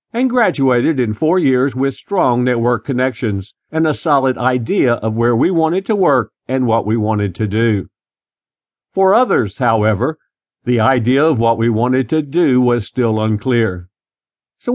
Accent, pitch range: American, 115-155 Hz